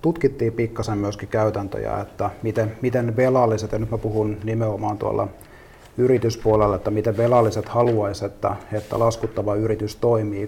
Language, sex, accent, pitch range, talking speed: Finnish, male, native, 105-120 Hz, 135 wpm